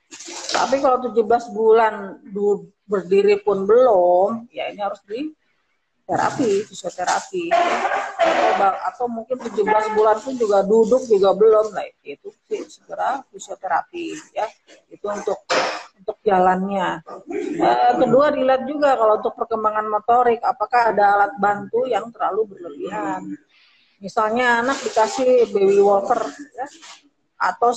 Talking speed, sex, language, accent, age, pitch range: 115 wpm, female, Indonesian, native, 40-59, 200-275 Hz